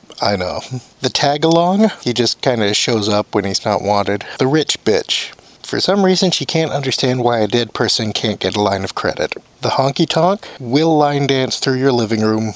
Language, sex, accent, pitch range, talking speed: English, male, American, 110-150 Hz, 200 wpm